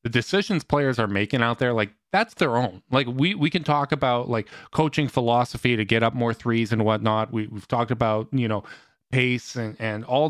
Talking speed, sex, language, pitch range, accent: 215 wpm, male, English, 110-140 Hz, American